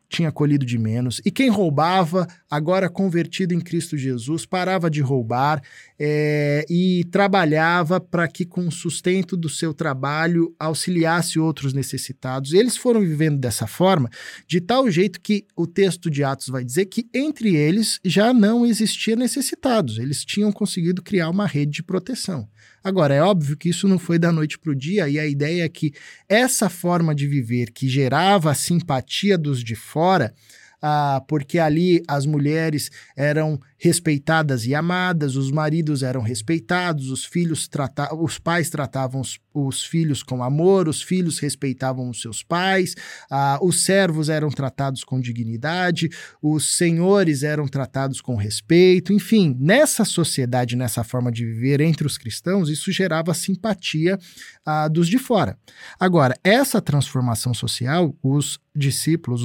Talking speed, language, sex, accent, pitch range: 155 wpm, Portuguese, male, Brazilian, 140-185 Hz